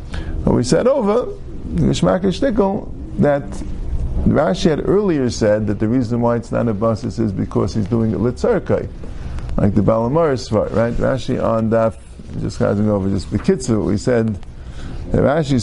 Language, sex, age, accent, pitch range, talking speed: English, male, 50-69, American, 75-120 Hz, 145 wpm